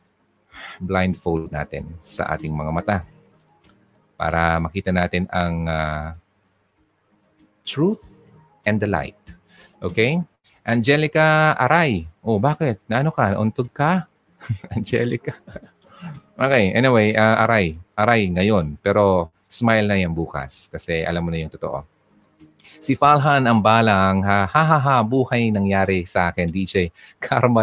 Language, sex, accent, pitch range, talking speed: Filipino, male, native, 85-110 Hz, 115 wpm